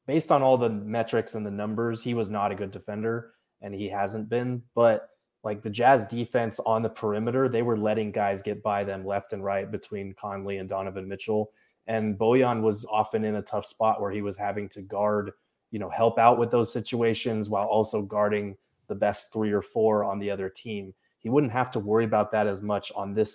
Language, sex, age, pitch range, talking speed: English, male, 20-39, 105-120 Hz, 220 wpm